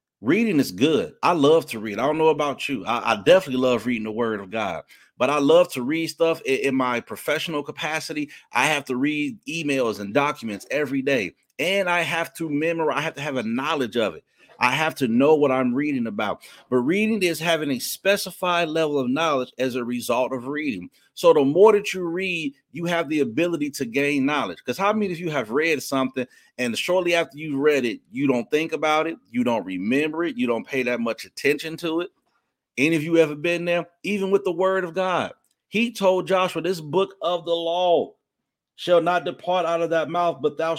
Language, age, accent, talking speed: English, 30-49, American, 220 wpm